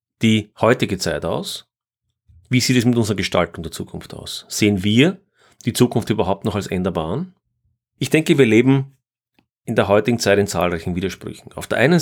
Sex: male